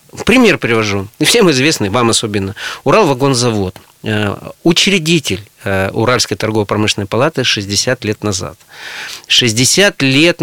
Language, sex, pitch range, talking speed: Russian, male, 110-135 Hz, 105 wpm